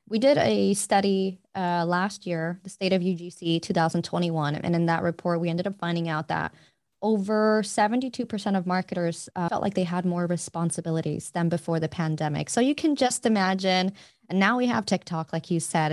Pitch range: 155-185 Hz